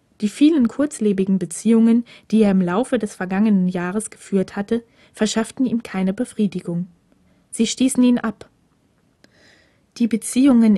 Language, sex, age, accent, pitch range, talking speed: German, female, 20-39, German, 185-240 Hz, 130 wpm